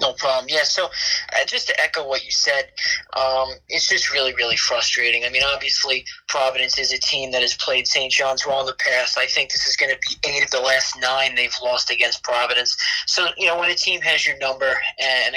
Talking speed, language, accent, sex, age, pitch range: 230 wpm, English, American, male, 20-39, 130-210 Hz